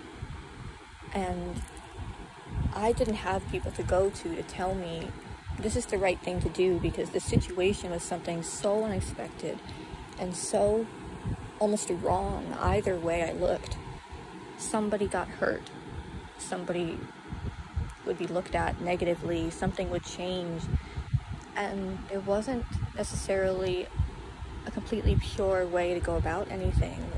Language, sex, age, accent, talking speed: English, female, 20-39, American, 125 wpm